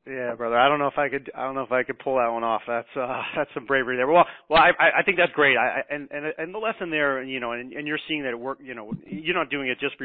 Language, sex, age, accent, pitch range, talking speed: English, male, 30-49, American, 115-140 Hz, 335 wpm